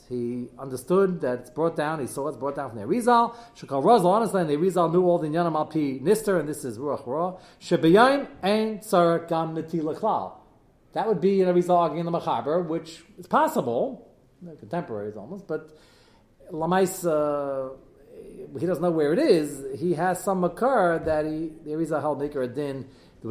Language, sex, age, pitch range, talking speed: English, male, 40-59, 150-200 Hz, 185 wpm